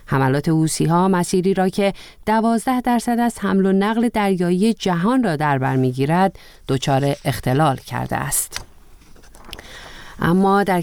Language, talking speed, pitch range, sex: Persian, 125 wpm, 145-185 Hz, female